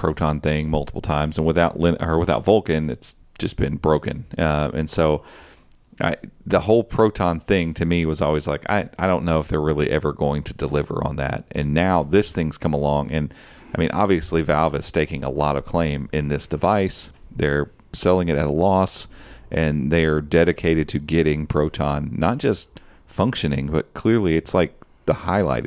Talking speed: 185 wpm